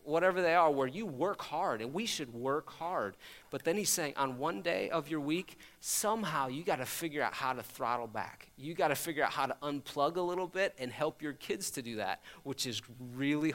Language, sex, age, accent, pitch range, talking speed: English, male, 30-49, American, 135-170 Hz, 225 wpm